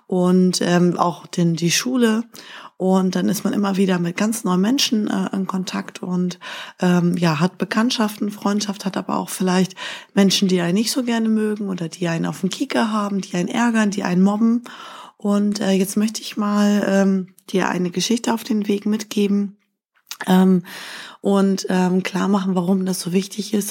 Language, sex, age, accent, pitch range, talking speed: German, female, 20-39, German, 185-215 Hz, 180 wpm